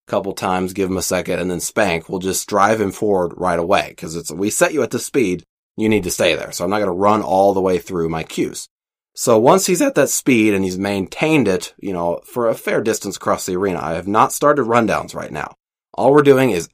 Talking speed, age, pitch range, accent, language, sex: 255 wpm, 30-49, 95-120 Hz, American, English, male